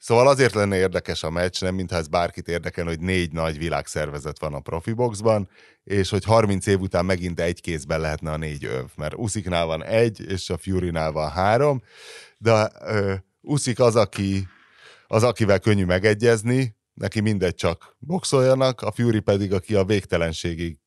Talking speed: 165 wpm